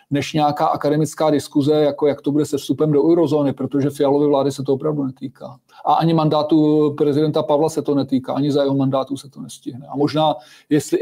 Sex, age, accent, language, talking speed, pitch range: male, 40-59, native, Czech, 200 wpm, 135-155 Hz